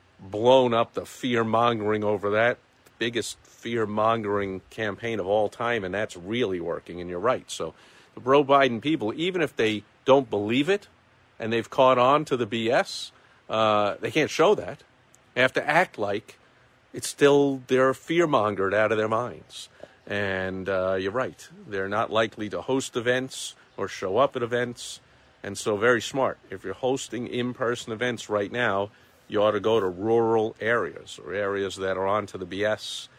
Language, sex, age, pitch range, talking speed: English, male, 50-69, 100-125 Hz, 180 wpm